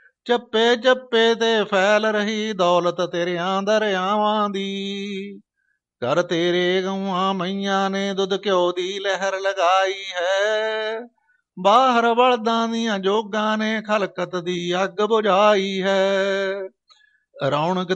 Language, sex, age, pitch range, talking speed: Punjabi, male, 50-69, 190-220 Hz, 100 wpm